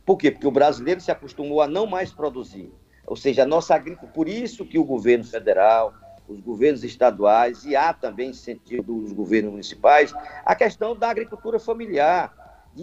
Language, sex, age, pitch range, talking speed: Portuguese, male, 50-69, 130-210 Hz, 180 wpm